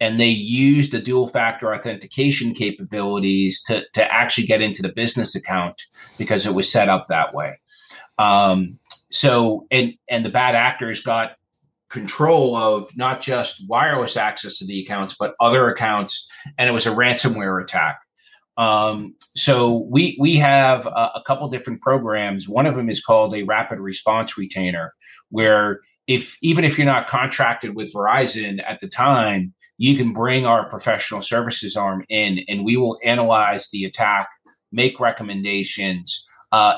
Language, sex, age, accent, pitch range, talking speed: English, male, 30-49, American, 105-130 Hz, 160 wpm